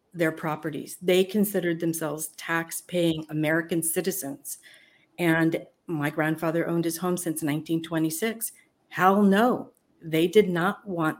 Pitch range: 165-195 Hz